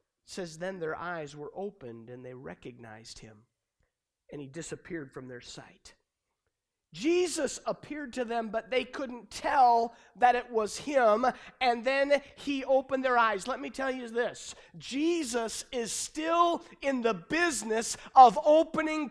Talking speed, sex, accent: 150 wpm, male, American